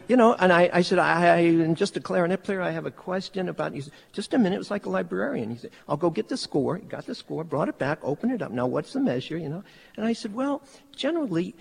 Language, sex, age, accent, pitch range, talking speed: English, male, 60-79, American, 130-195 Hz, 285 wpm